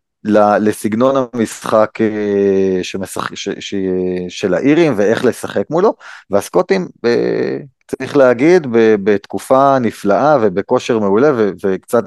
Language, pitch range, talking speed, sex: Hebrew, 100-130 Hz, 90 wpm, male